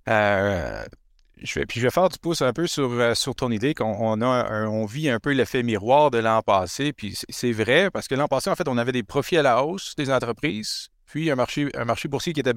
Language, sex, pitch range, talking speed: French, male, 105-130 Hz, 265 wpm